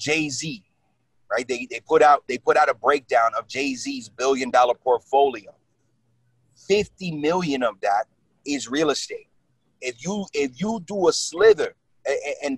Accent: American